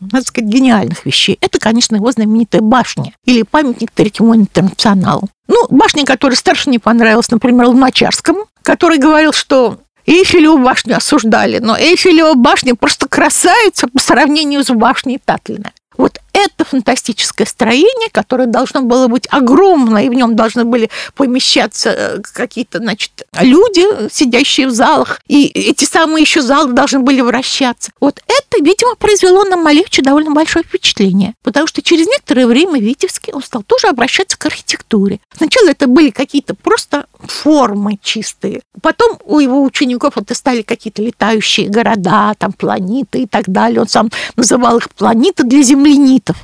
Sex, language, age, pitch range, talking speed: female, Russian, 50-69, 235-310 Hz, 150 wpm